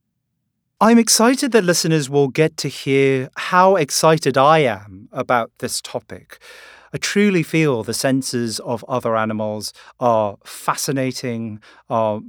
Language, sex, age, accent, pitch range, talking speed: English, male, 40-59, British, 120-155 Hz, 125 wpm